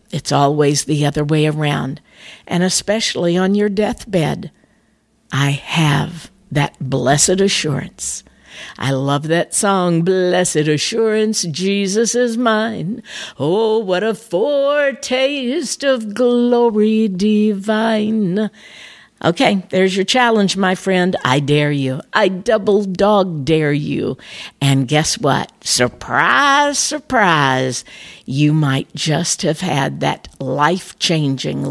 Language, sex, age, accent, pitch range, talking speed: English, female, 60-79, American, 160-210 Hz, 110 wpm